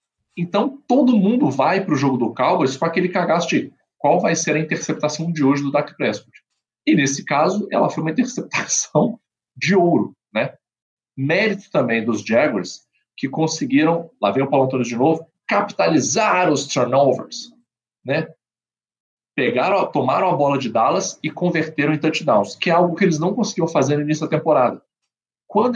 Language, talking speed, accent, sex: Portuguese, 170 wpm, Brazilian, male